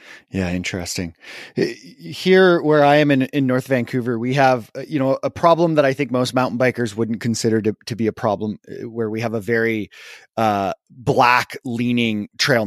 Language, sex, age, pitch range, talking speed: English, male, 20-39, 105-130 Hz, 180 wpm